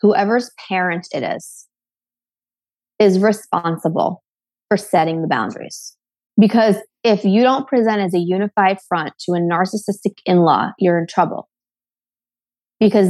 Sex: female